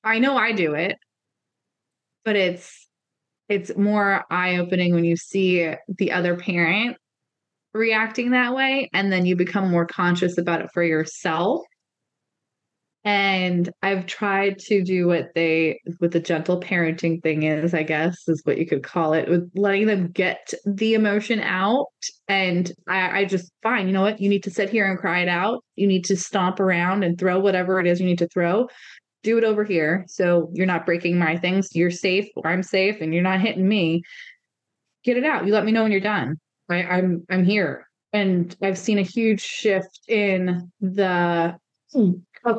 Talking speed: 185 wpm